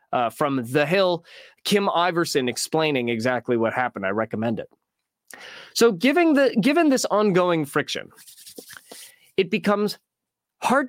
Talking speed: 125 wpm